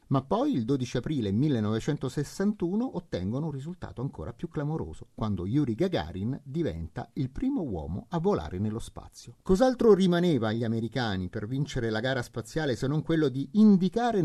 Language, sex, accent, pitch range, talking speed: Italian, male, native, 115-165 Hz, 155 wpm